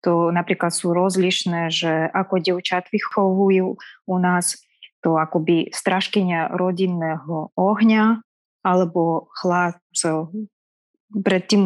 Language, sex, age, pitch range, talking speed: Slovak, female, 20-39, 180-215 Hz, 105 wpm